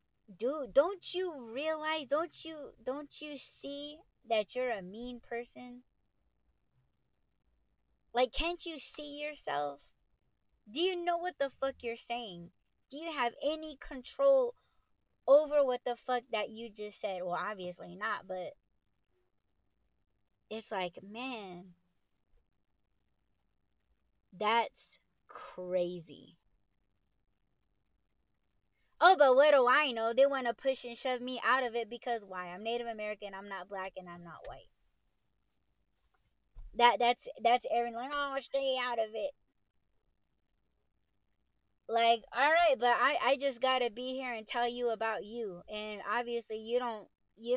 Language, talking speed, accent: English, 135 wpm, American